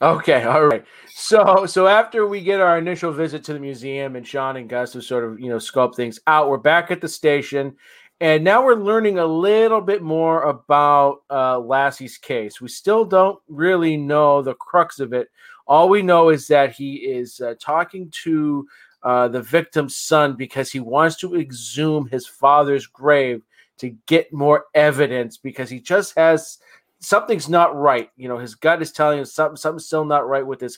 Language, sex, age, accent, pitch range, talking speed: English, male, 40-59, American, 135-170 Hz, 195 wpm